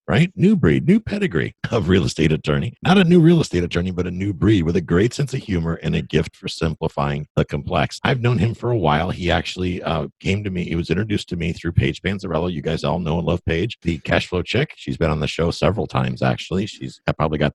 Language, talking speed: English, 255 wpm